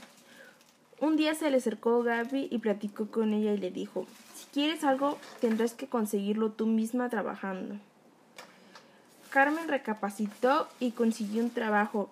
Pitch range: 205-255 Hz